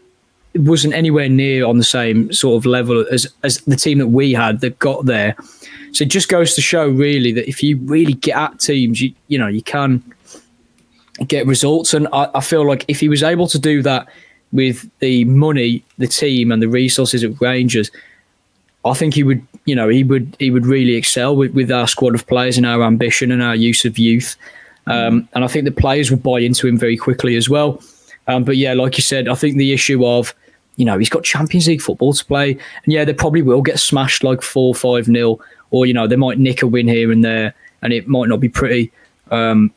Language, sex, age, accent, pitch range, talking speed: English, male, 20-39, British, 120-145 Hz, 230 wpm